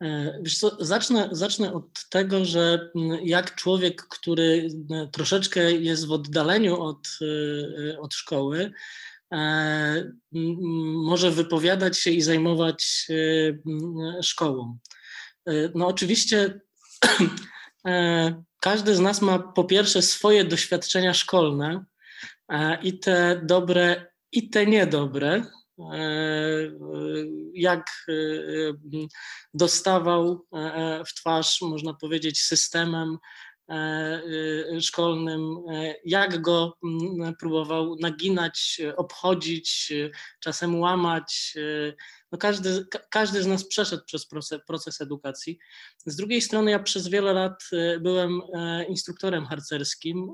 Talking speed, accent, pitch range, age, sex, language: 85 wpm, native, 155-180 Hz, 20-39, male, Polish